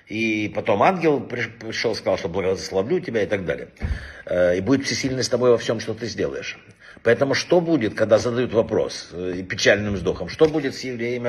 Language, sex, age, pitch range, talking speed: Russian, male, 60-79, 105-130 Hz, 180 wpm